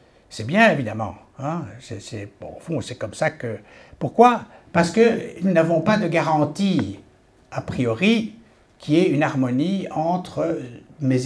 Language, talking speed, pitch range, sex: French, 160 wpm, 125-165 Hz, male